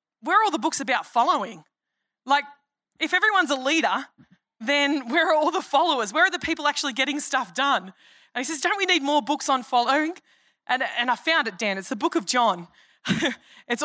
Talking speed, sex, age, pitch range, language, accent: 210 wpm, female, 20-39, 205-285 Hz, English, Australian